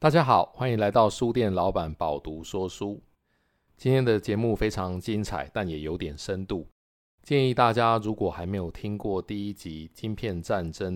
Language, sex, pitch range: Chinese, male, 80-110 Hz